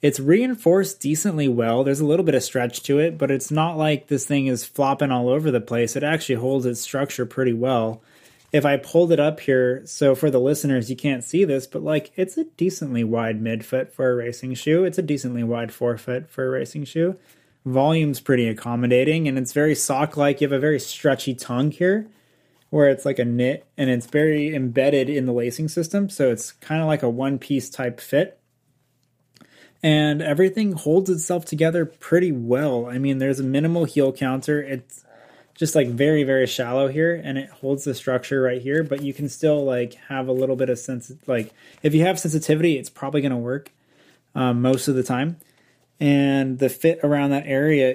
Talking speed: 200 wpm